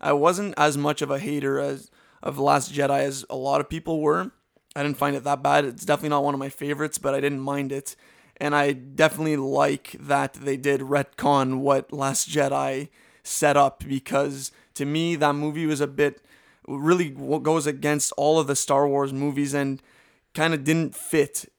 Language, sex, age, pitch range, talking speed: English, male, 20-39, 140-150 Hz, 195 wpm